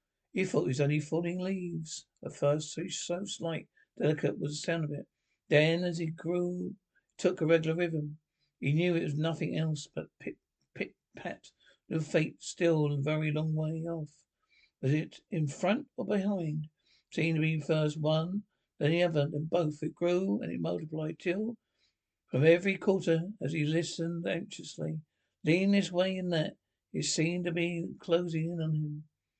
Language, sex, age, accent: English, male, 60-79, British